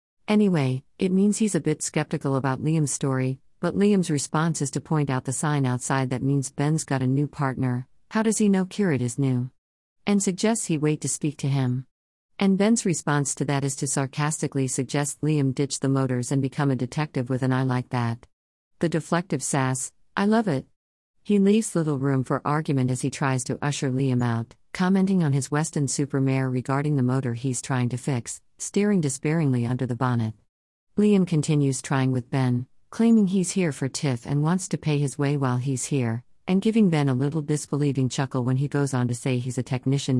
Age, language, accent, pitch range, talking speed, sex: 50-69, English, American, 130-170 Hz, 205 wpm, female